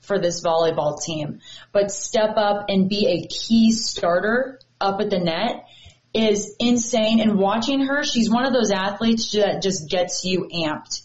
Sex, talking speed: female, 170 wpm